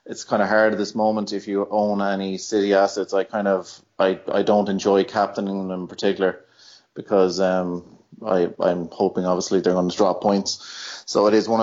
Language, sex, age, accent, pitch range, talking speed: English, male, 20-39, Irish, 100-110 Hz, 200 wpm